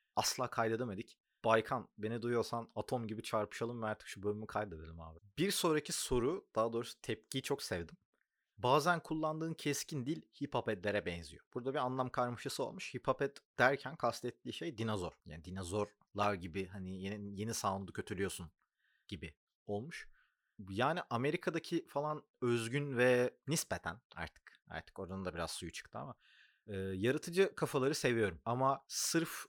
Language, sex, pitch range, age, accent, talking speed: Turkish, male, 100-130 Hz, 30-49, native, 140 wpm